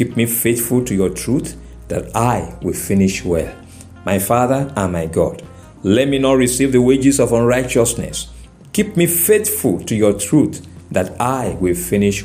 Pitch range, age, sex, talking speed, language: 95-140 Hz, 50-69, male, 165 wpm, English